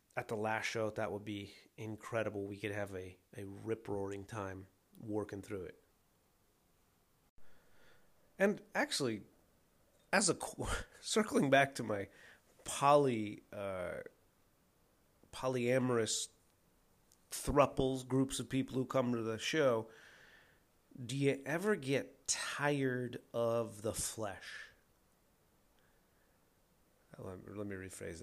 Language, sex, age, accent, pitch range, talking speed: English, male, 30-49, American, 105-130 Hz, 105 wpm